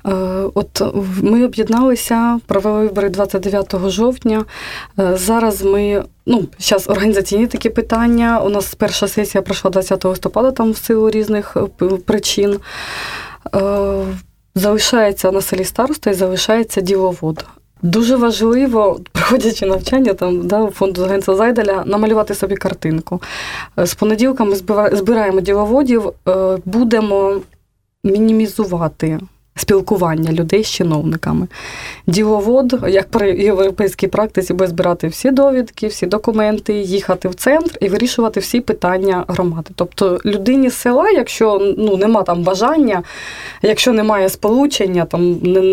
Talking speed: 115 wpm